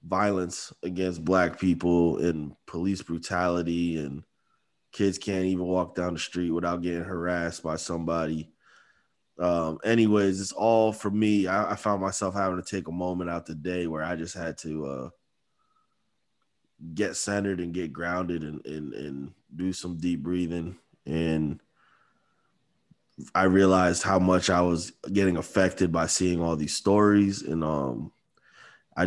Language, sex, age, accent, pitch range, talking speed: English, male, 20-39, American, 85-95 Hz, 150 wpm